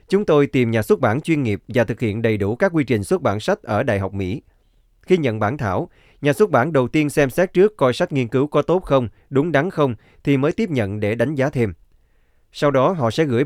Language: Vietnamese